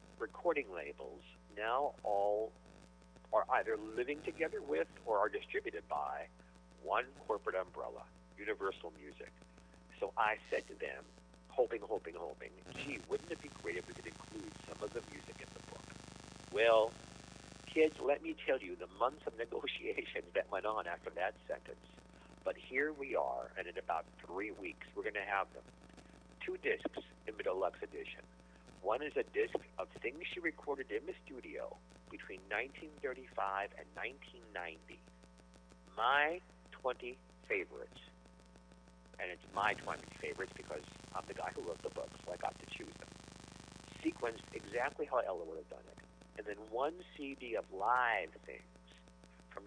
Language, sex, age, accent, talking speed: English, male, 50-69, American, 155 wpm